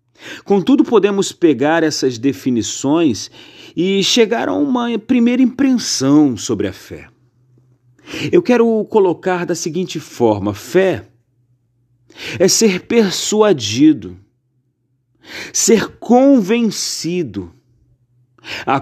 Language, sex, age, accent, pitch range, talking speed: Portuguese, male, 40-59, Brazilian, 115-165 Hz, 85 wpm